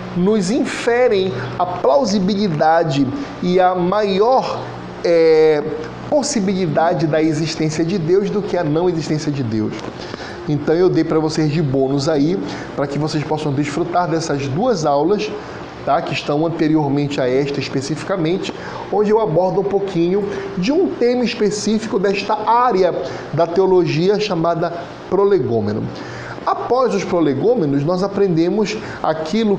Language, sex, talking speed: Portuguese, male, 125 wpm